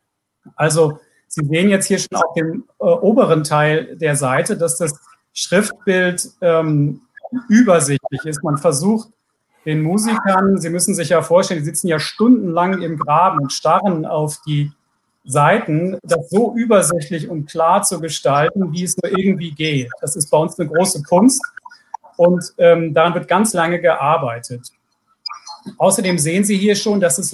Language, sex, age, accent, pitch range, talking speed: German, male, 40-59, German, 155-190 Hz, 160 wpm